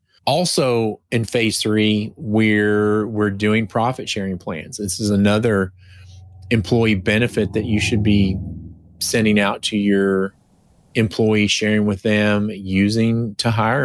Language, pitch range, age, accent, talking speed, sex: English, 100-120 Hz, 30-49, American, 130 wpm, male